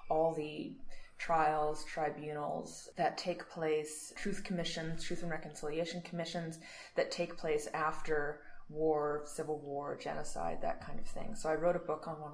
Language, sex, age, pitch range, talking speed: English, female, 20-39, 155-185 Hz, 155 wpm